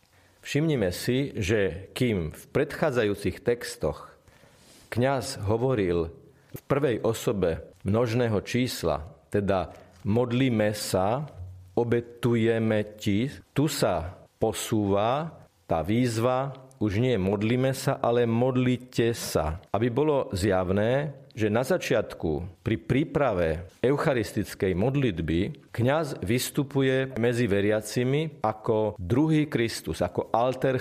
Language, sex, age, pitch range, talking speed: Slovak, male, 40-59, 100-135 Hz, 95 wpm